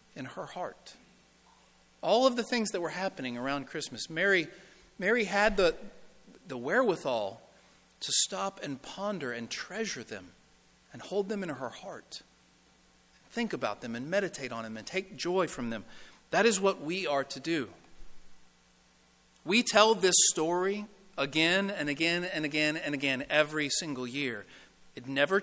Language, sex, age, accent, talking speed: English, male, 40-59, American, 155 wpm